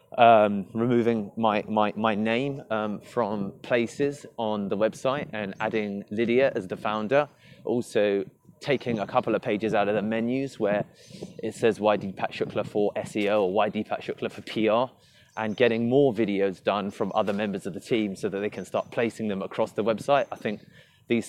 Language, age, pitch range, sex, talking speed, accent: English, 20-39, 105-125 Hz, male, 185 wpm, British